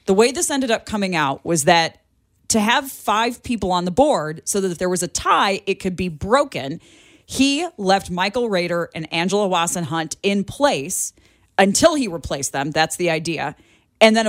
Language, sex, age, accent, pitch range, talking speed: English, female, 30-49, American, 160-210 Hz, 195 wpm